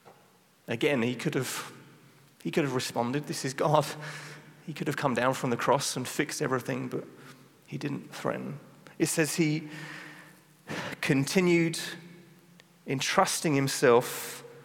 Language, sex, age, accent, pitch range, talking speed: English, male, 30-49, British, 125-155 Hz, 130 wpm